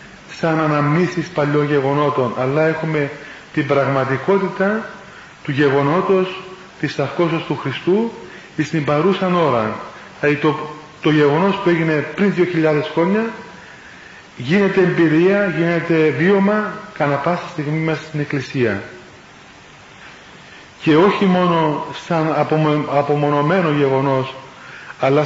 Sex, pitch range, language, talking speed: male, 140-170 Hz, Greek, 100 wpm